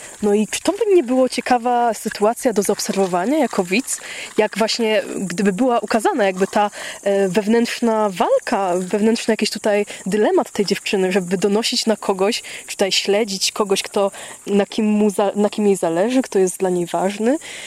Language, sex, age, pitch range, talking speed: Polish, female, 20-39, 200-245 Hz, 165 wpm